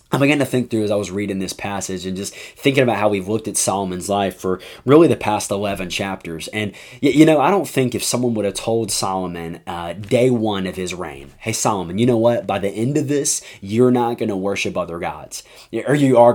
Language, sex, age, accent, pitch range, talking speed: English, male, 20-39, American, 100-120 Hz, 240 wpm